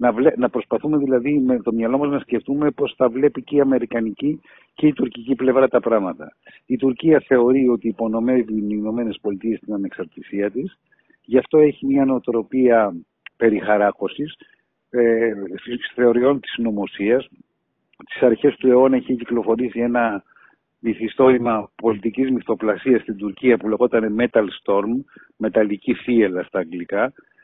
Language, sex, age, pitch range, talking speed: Greek, male, 50-69, 110-130 Hz, 135 wpm